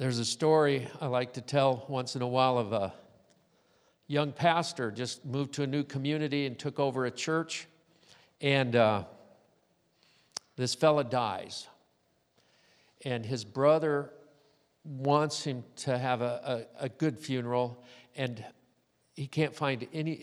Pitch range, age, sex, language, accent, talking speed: 115-145 Hz, 50-69, male, English, American, 140 wpm